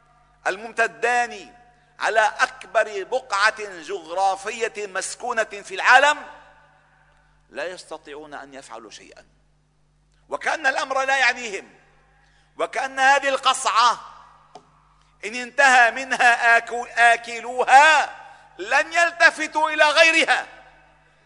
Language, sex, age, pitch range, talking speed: Arabic, male, 50-69, 165-270 Hz, 80 wpm